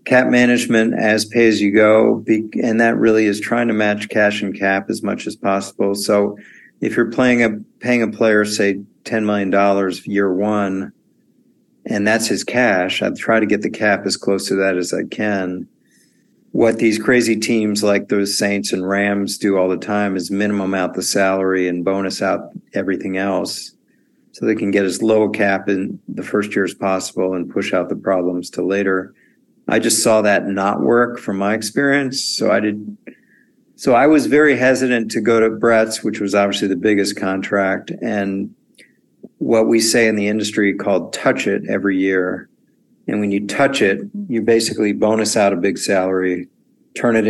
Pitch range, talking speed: 95-115 Hz, 190 wpm